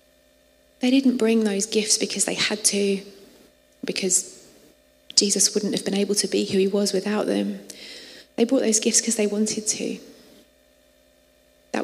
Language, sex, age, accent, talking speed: English, female, 30-49, British, 155 wpm